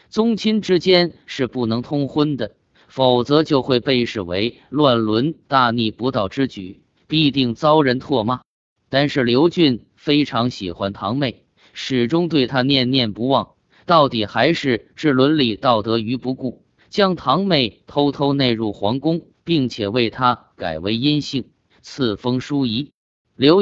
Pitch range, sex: 115-150 Hz, male